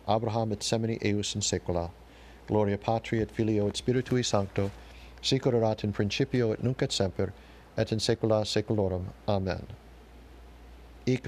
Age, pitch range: 50-69, 95-115 Hz